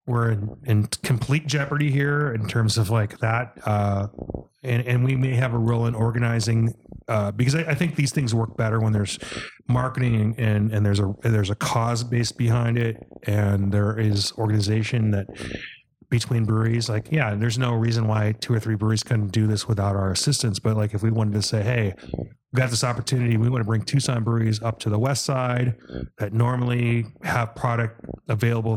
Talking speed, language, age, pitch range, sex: 200 wpm, English, 30-49, 105-120 Hz, male